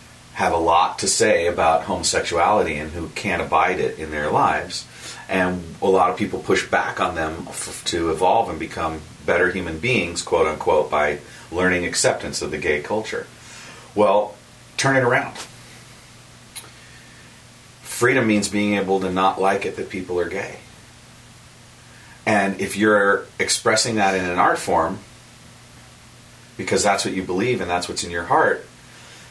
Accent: American